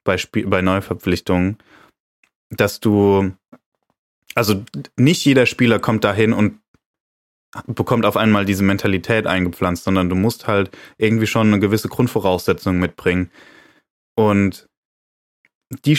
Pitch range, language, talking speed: 100-120 Hz, German, 110 wpm